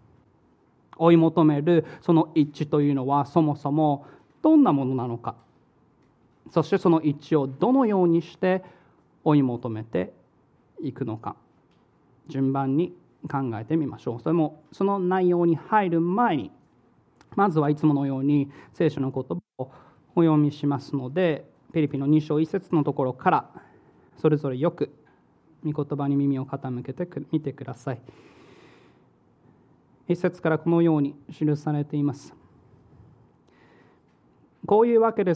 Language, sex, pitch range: Japanese, male, 140-170 Hz